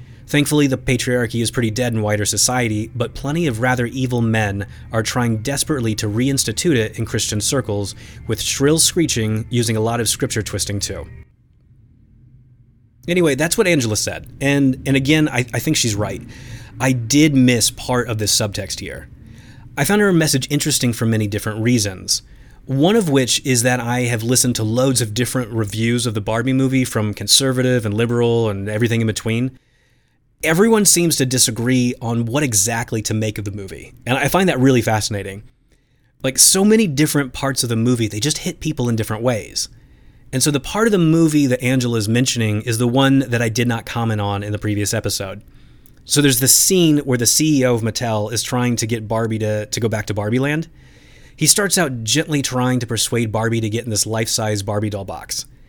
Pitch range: 110-135 Hz